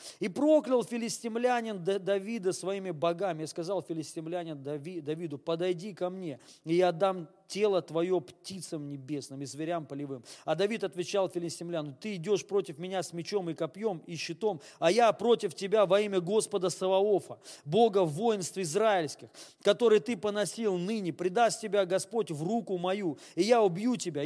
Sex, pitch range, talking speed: male, 175-225 Hz, 155 wpm